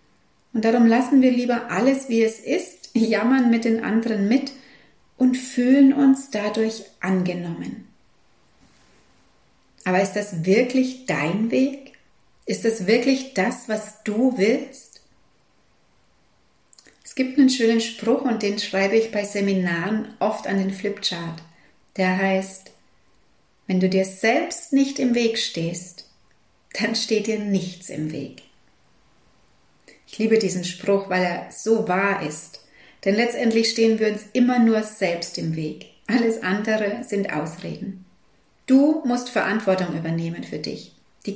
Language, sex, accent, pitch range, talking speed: German, female, German, 185-235 Hz, 135 wpm